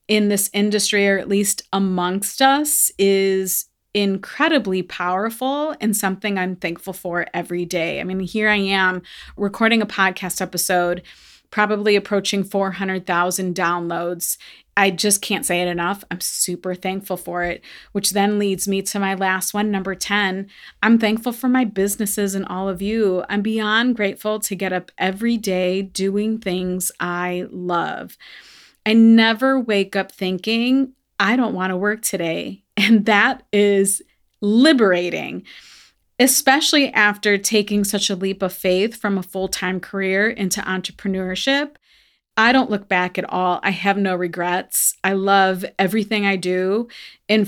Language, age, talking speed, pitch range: English, 30-49, 150 wpm, 185-215 Hz